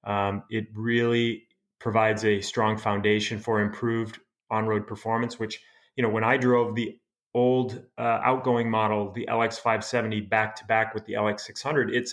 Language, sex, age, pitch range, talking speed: English, male, 30-49, 105-120 Hz, 145 wpm